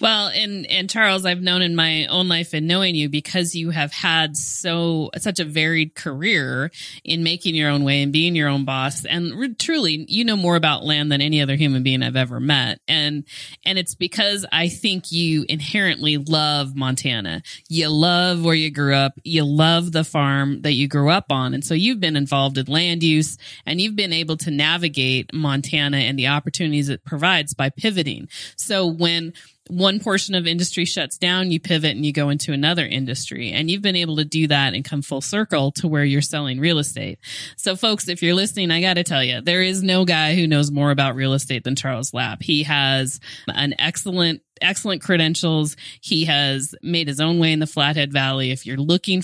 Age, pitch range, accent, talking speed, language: 30-49, 140-170 Hz, American, 205 wpm, English